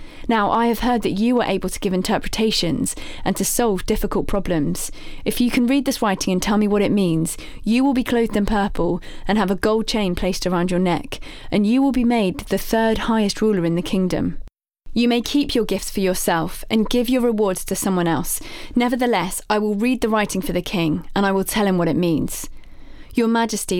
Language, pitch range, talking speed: English, 185-225 Hz, 220 wpm